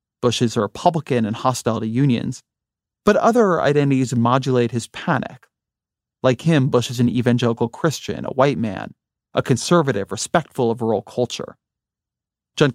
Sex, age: male, 30-49